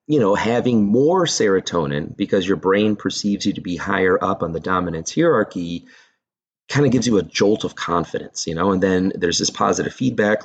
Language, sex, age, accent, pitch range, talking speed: English, male, 30-49, American, 90-110 Hz, 195 wpm